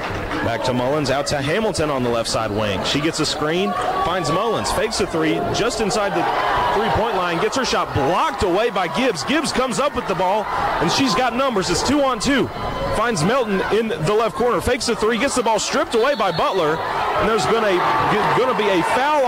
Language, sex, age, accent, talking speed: English, male, 30-49, American, 215 wpm